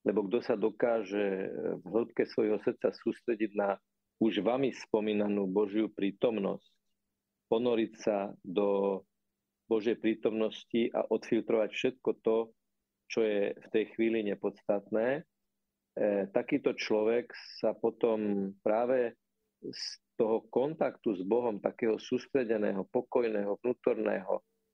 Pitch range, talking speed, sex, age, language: 105-115 Hz, 105 wpm, male, 40-59, Slovak